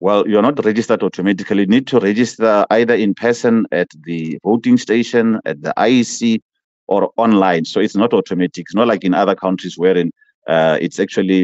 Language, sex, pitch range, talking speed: English, male, 95-130 Hz, 180 wpm